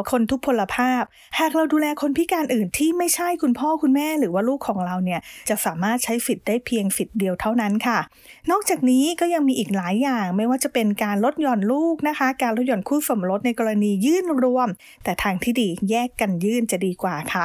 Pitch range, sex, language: 200-275 Hz, female, English